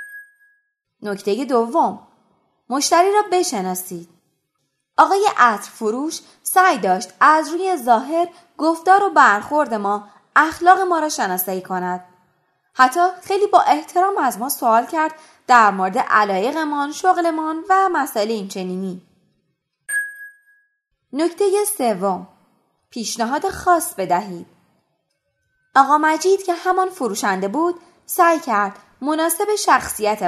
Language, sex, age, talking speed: Persian, female, 20-39, 105 wpm